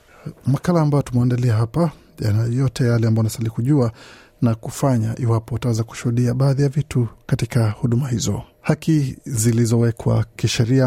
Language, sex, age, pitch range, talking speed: Swahili, male, 50-69, 115-140 Hz, 115 wpm